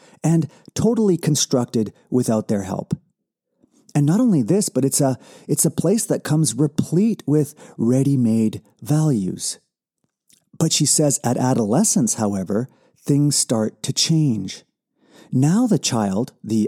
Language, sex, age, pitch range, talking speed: English, male, 40-59, 115-165 Hz, 130 wpm